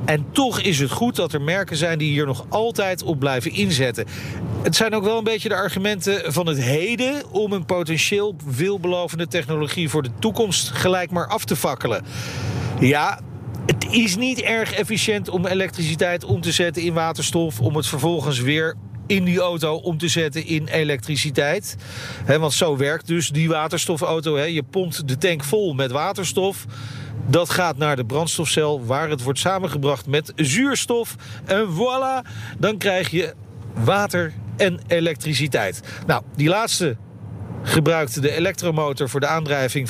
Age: 40-59